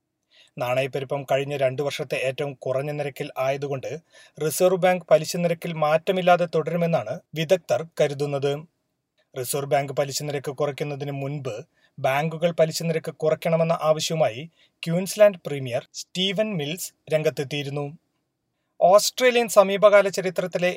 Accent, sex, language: native, male, Malayalam